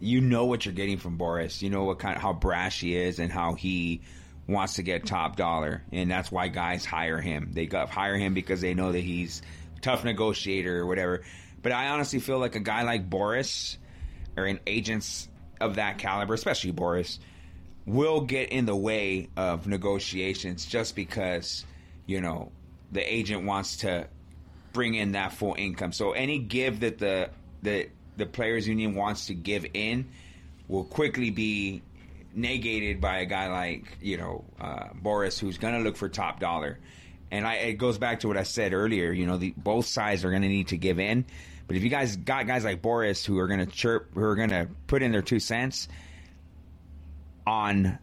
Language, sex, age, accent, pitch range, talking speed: English, male, 30-49, American, 85-110 Hz, 195 wpm